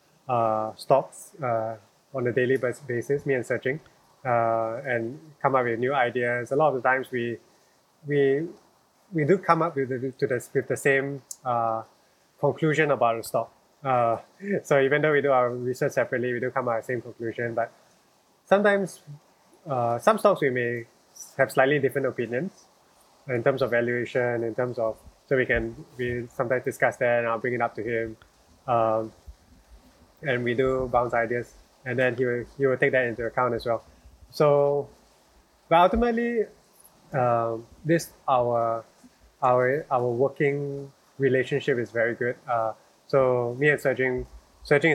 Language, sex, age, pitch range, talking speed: English, male, 20-39, 120-140 Hz, 170 wpm